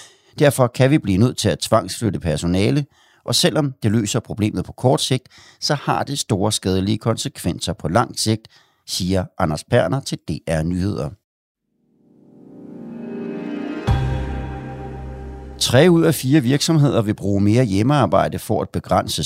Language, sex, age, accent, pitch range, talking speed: Danish, male, 60-79, native, 95-130 Hz, 135 wpm